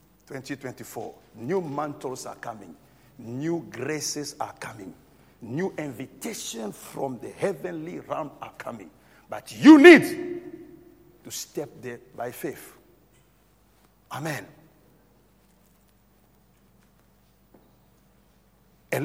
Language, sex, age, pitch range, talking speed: English, male, 60-79, 115-155 Hz, 85 wpm